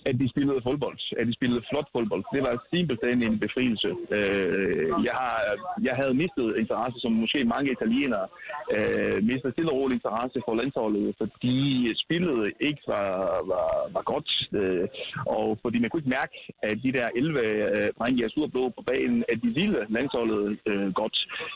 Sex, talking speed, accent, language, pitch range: male, 155 wpm, native, Danish, 110-140 Hz